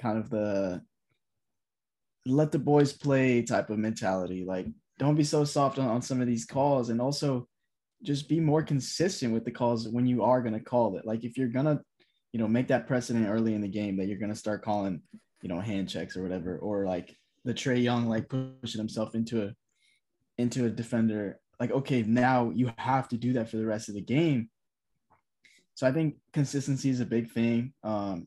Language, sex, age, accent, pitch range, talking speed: English, male, 10-29, American, 105-130 Hz, 210 wpm